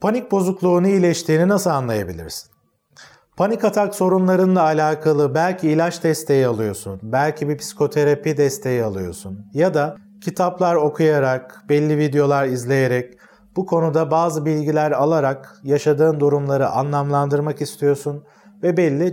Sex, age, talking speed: male, 40-59, 115 wpm